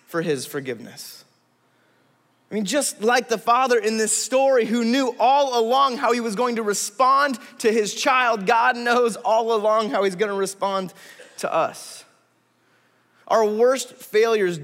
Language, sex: English, male